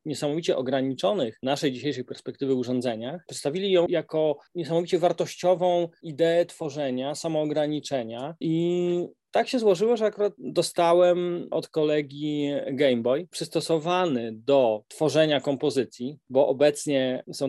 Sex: male